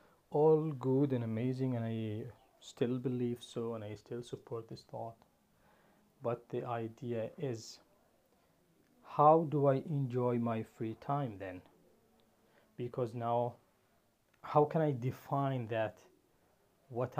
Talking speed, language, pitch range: 120 wpm, English, 120-140 Hz